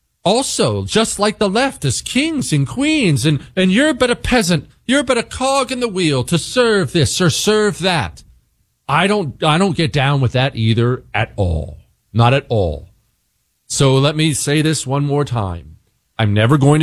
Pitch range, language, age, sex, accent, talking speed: 120-170 Hz, English, 40-59, male, American, 190 wpm